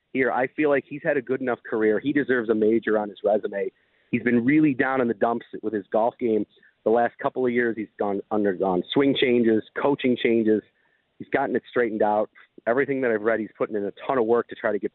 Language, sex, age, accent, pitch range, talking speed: English, male, 40-59, American, 110-130 Hz, 240 wpm